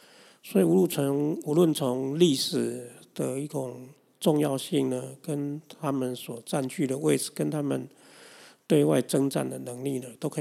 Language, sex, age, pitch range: Chinese, male, 50-69, 125-150 Hz